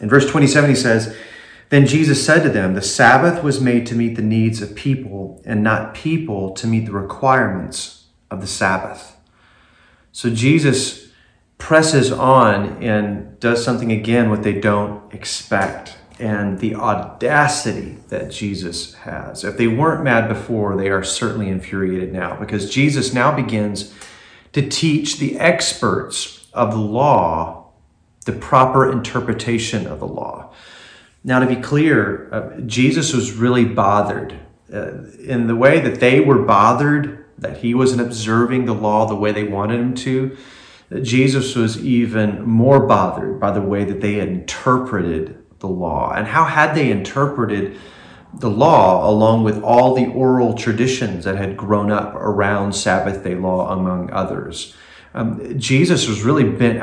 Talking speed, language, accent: 155 wpm, English, American